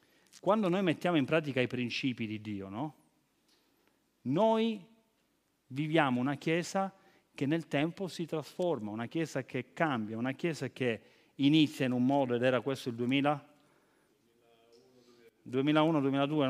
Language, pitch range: Italian, 125-165 Hz